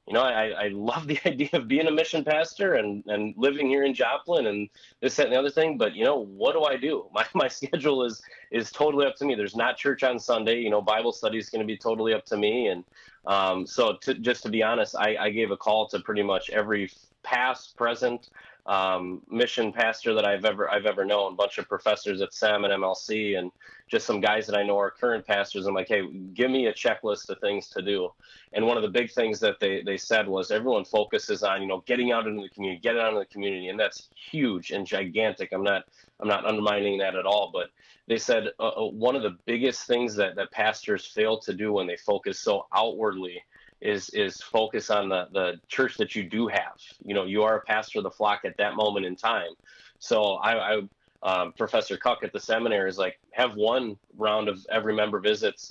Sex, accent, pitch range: male, American, 105-130 Hz